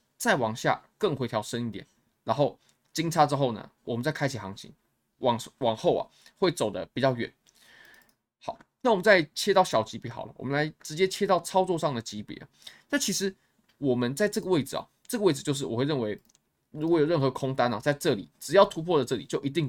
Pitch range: 120-165 Hz